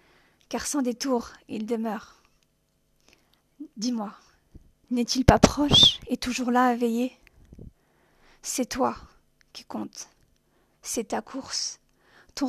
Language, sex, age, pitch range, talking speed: French, female, 40-59, 225-255 Hz, 105 wpm